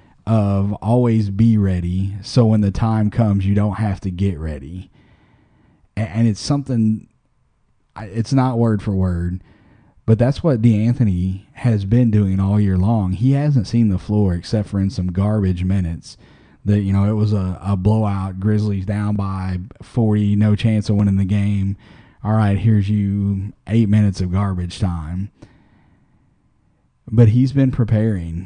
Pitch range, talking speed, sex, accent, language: 95-120 Hz, 160 wpm, male, American, English